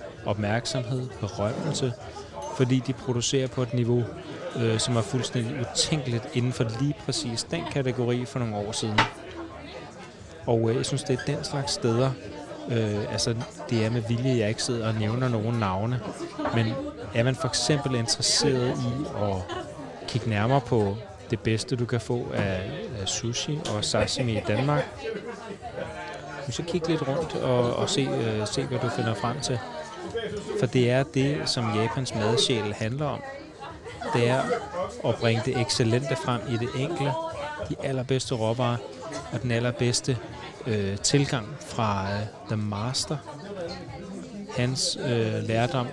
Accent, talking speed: native, 145 wpm